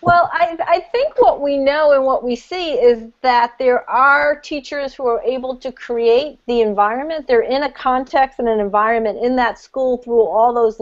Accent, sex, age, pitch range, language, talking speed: American, female, 40-59, 220-270 Hz, English, 200 wpm